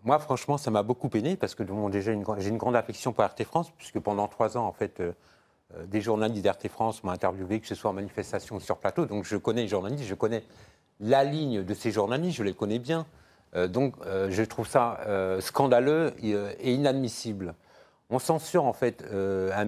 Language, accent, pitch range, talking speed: French, French, 105-135 Hz, 200 wpm